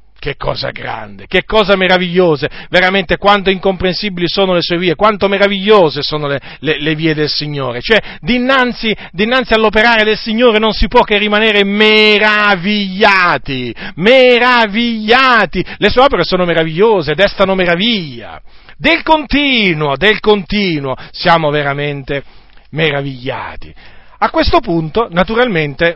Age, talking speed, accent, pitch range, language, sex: 40-59, 125 wpm, native, 150-225 Hz, Italian, male